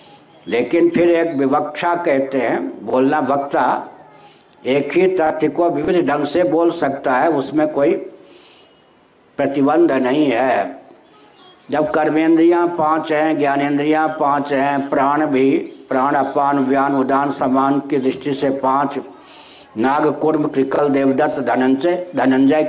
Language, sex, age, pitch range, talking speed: Hindi, male, 60-79, 135-155 Hz, 125 wpm